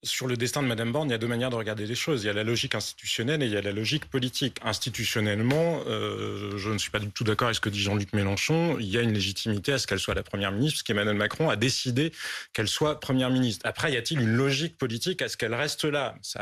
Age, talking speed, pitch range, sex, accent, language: 30-49, 280 wpm, 110-150 Hz, male, French, French